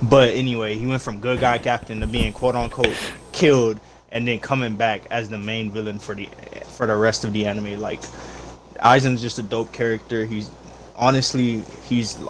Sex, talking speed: male, 185 wpm